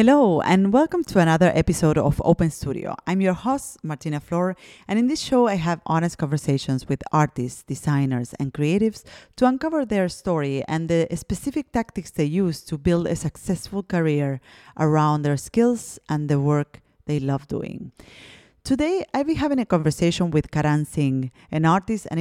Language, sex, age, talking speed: English, female, 30-49, 170 wpm